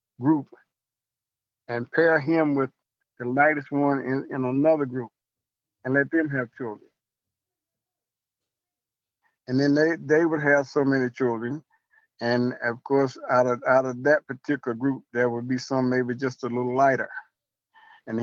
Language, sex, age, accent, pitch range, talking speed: English, male, 50-69, American, 125-155 Hz, 150 wpm